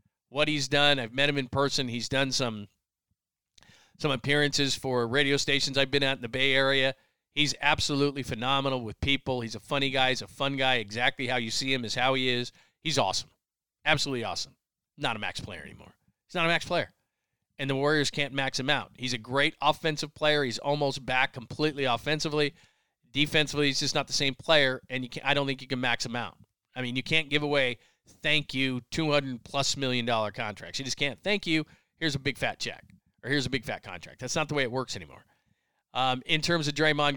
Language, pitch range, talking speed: English, 130-150 Hz, 215 wpm